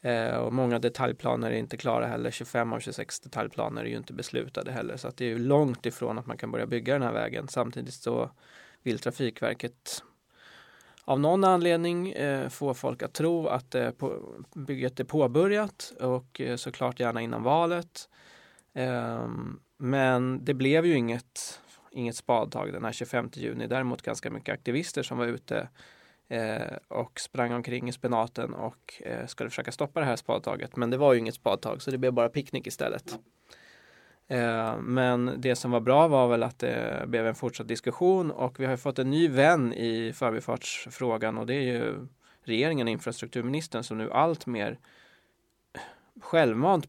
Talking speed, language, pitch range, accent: 165 wpm, Swedish, 120-140 Hz, native